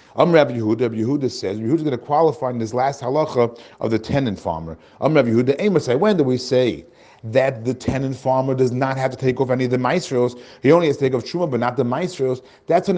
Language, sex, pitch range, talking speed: English, male, 120-150 Hz, 250 wpm